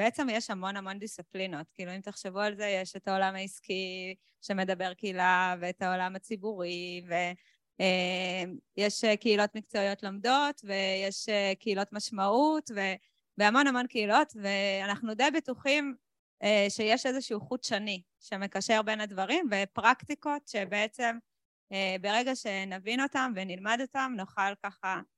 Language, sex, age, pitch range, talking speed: Hebrew, female, 20-39, 190-220 Hz, 115 wpm